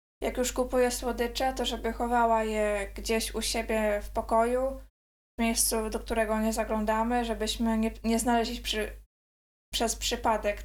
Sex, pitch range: female, 220-245 Hz